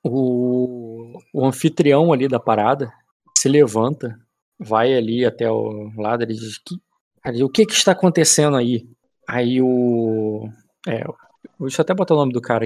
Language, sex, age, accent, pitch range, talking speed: Portuguese, male, 20-39, Brazilian, 115-150 Hz, 155 wpm